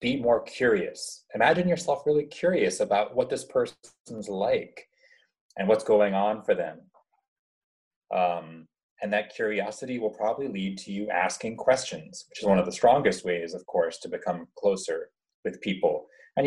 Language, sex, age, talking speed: English, male, 30-49, 160 wpm